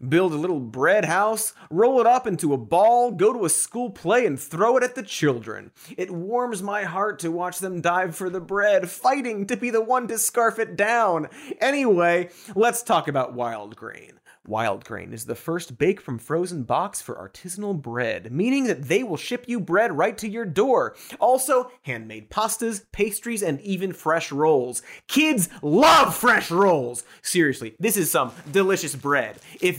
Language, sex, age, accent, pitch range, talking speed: English, male, 30-49, American, 140-230 Hz, 180 wpm